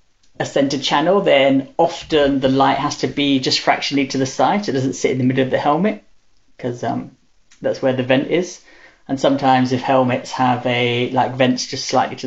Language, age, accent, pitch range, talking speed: English, 30-49, British, 125-140 Hz, 210 wpm